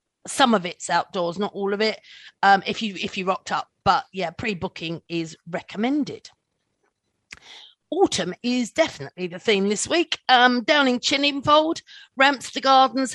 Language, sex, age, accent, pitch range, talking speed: English, female, 40-59, British, 195-230 Hz, 150 wpm